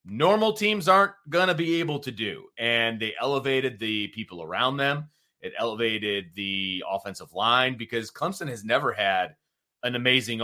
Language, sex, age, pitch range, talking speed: English, male, 30-49, 110-140 Hz, 160 wpm